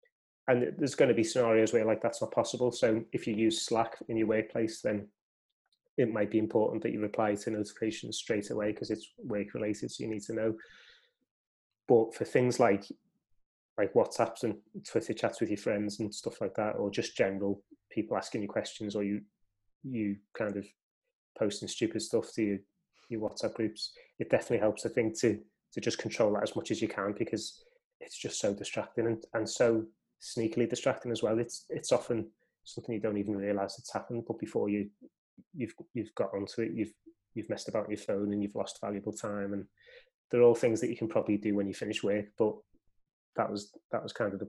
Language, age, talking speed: English, 20-39, 205 wpm